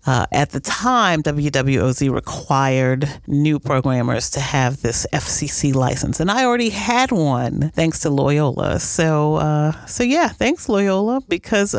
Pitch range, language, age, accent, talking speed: 130-180 Hz, English, 40-59, American, 145 wpm